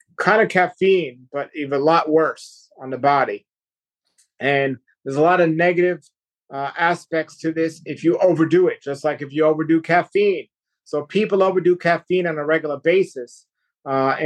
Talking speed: 170 wpm